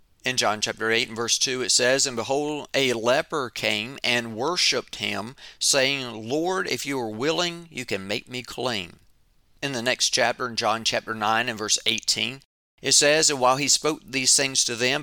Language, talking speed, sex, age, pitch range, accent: English, 195 wpm, male, 40-59, 110-140 Hz, American